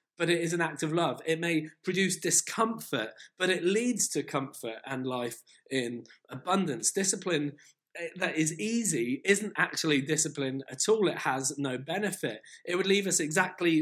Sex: male